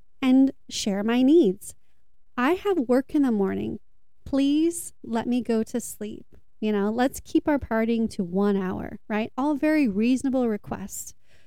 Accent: American